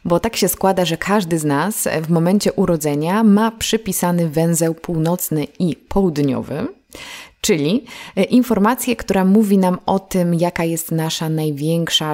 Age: 20-39